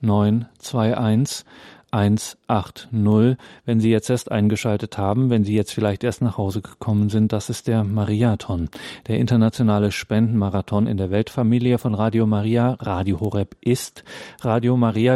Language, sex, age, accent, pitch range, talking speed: German, male, 40-59, German, 105-120 Hz, 135 wpm